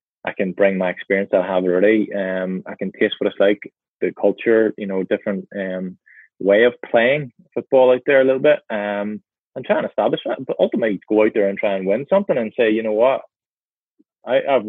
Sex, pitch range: male, 100-115 Hz